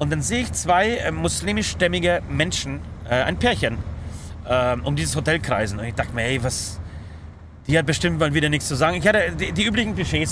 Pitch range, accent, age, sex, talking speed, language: 100-165 Hz, German, 30-49, male, 205 wpm, German